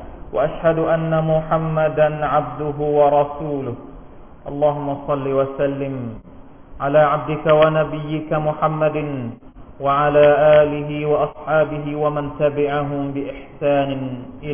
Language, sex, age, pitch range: Thai, male, 40-59, 125-150 Hz